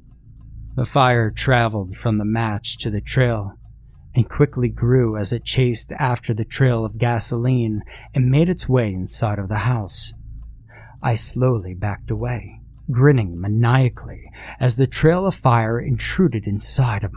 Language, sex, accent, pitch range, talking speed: English, male, American, 110-125 Hz, 145 wpm